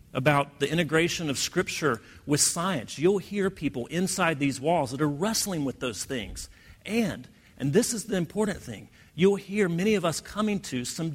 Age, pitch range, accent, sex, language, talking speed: 40-59, 125-175 Hz, American, male, English, 185 wpm